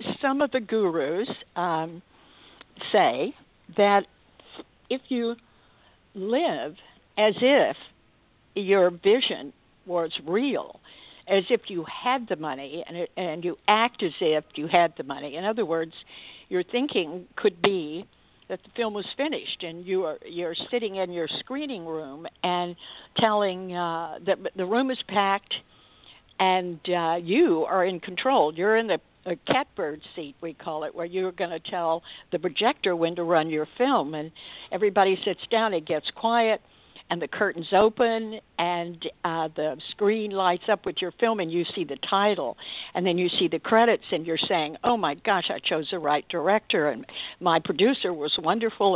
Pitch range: 170-220 Hz